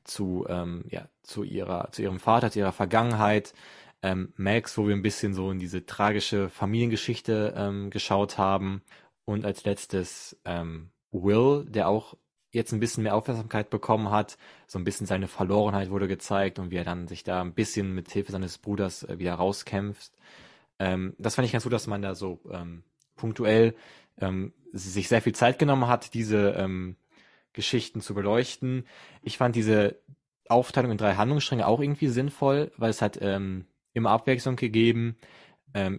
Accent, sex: German, male